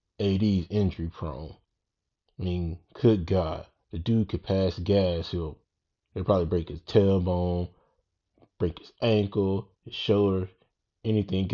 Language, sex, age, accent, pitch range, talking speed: English, male, 20-39, American, 90-105 Hz, 125 wpm